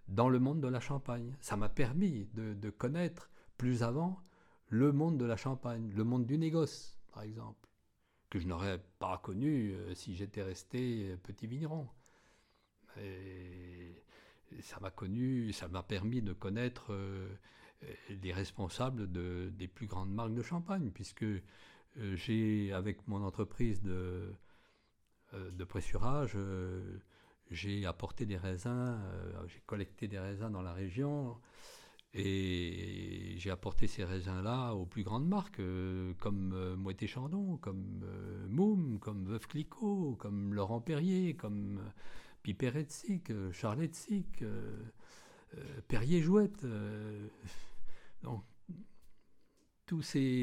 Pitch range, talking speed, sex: 95-130 Hz, 125 wpm, male